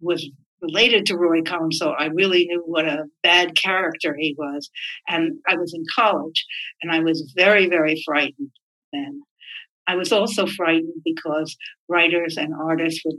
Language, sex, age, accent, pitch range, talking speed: English, female, 60-79, American, 165-230 Hz, 165 wpm